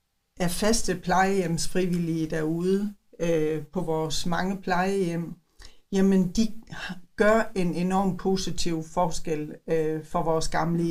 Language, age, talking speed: Danish, 60-79, 115 wpm